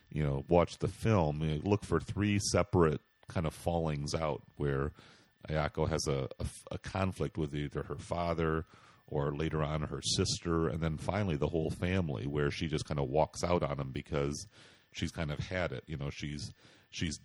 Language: English